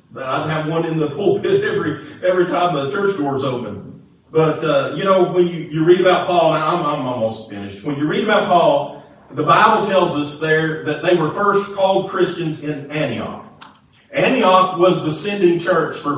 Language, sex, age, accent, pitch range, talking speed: English, male, 40-59, American, 150-185 Hz, 190 wpm